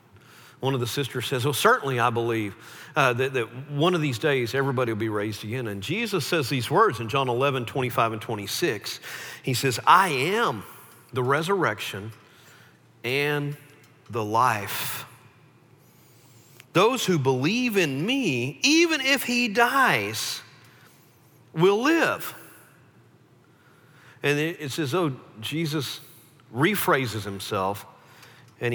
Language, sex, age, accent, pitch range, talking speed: English, male, 50-69, American, 120-170 Hz, 125 wpm